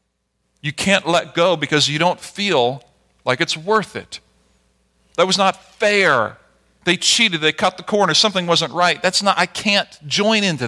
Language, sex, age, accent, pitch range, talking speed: English, male, 40-59, American, 115-190 Hz, 175 wpm